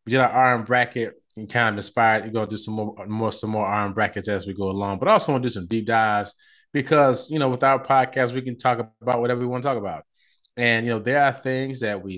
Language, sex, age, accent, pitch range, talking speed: English, male, 20-39, American, 100-115 Hz, 285 wpm